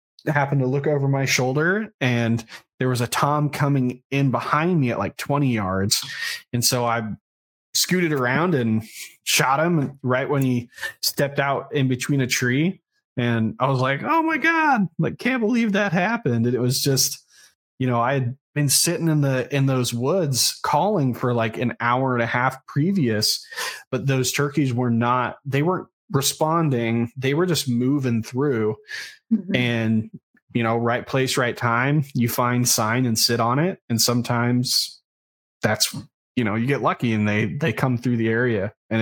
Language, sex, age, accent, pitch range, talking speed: English, male, 20-39, American, 115-145 Hz, 175 wpm